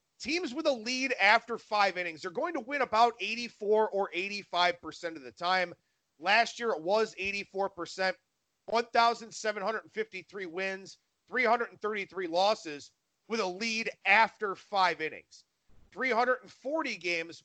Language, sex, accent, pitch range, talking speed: English, male, American, 185-240 Hz, 120 wpm